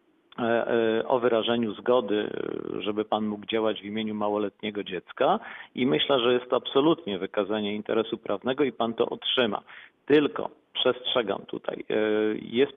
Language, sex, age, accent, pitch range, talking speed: Polish, male, 50-69, native, 105-120 Hz, 130 wpm